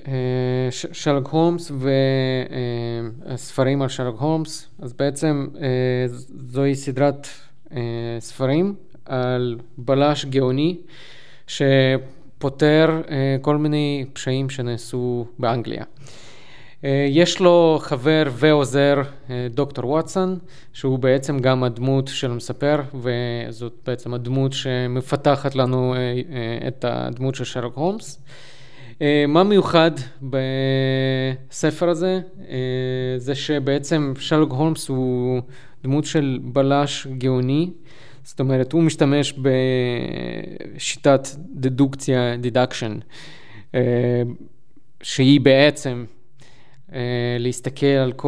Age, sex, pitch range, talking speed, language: 20-39, male, 125-145 Hz, 85 wpm, Hebrew